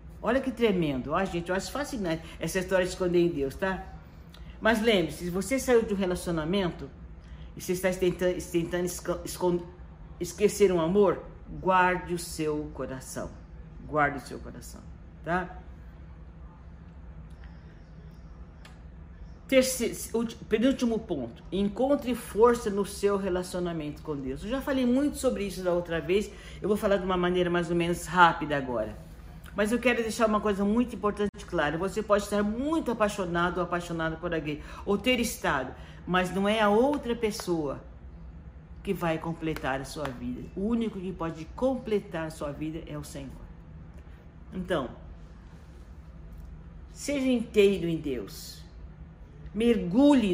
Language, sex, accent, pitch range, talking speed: Portuguese, male, Brazilian, 125-205 Hz, 140 wpm